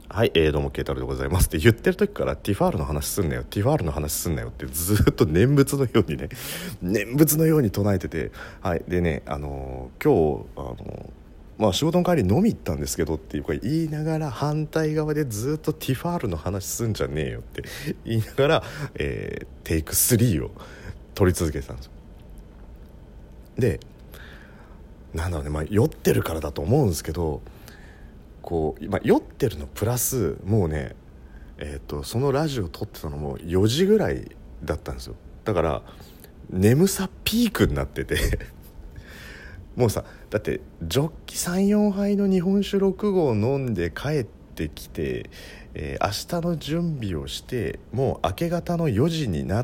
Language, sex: Japanese, male